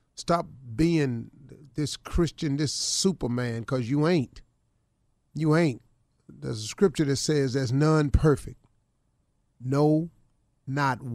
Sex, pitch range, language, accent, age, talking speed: male, 125-155 Hz, English, American, 40-59, 115 wpm